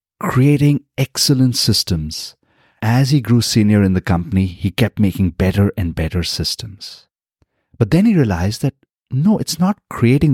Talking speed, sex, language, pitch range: 150 wpm, male, English, 95-130 Hz